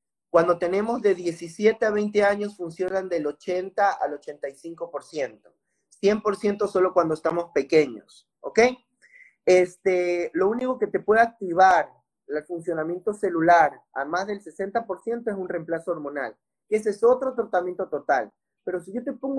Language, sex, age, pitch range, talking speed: Spanish, male, 30-49, 175-220 Hz, 140 wpm